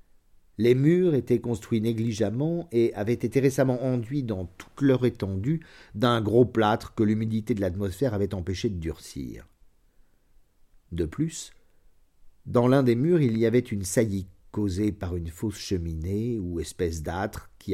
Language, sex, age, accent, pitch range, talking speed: French, male, 50-69, French, 90-120 Hz, 150 wpm